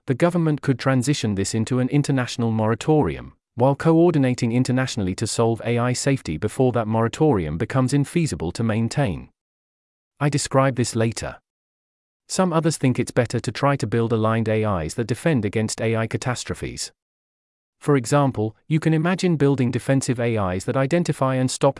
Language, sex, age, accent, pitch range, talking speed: English, male, 30-49, British, 105-140 Hz, 150 wpm